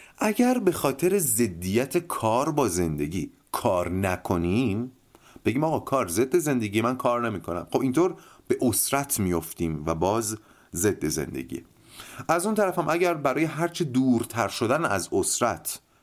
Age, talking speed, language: 30-49, 135 wpm, Persian